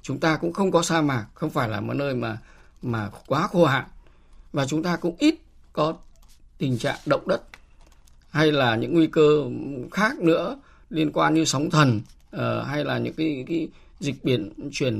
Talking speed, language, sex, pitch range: 190 wpm, Vietnamese, male, 115-165 Hz